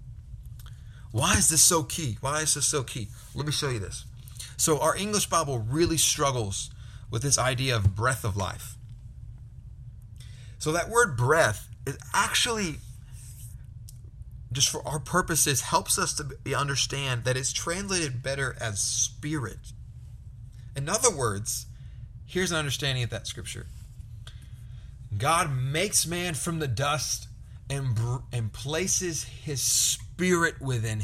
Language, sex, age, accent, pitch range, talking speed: English, male, 30-49, American, 115-165 Hz, 135 wpm